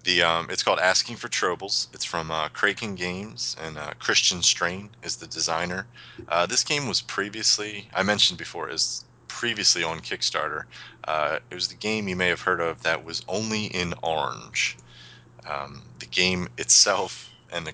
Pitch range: 80-105 Hz